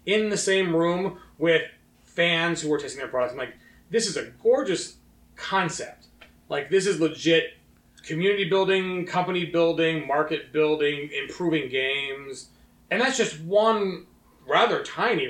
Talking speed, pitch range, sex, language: 140 wpm, 140-195 Hz, male, English